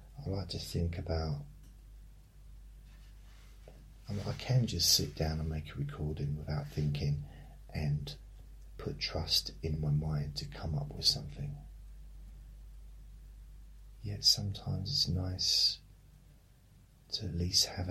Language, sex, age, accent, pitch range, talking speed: English, male, 40-59, British, 75-105 Hz, 115 wpm